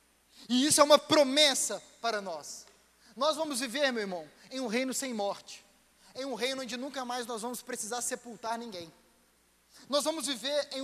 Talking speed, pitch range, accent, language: 175 wpm, 220-285 Hz, Brazilian, Portuguese